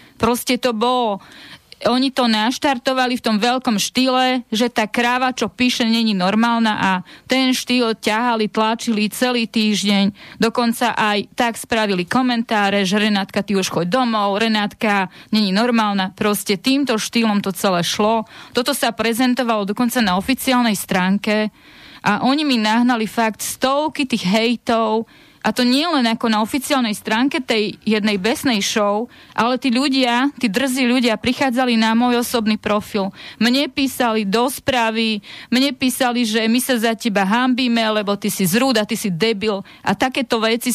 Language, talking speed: Slovak, 155 wpm